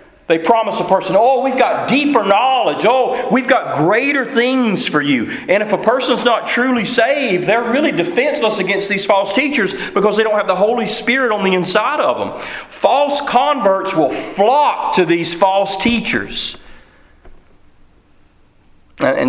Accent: American